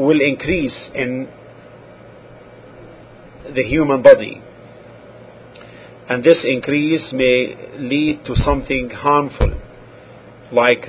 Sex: male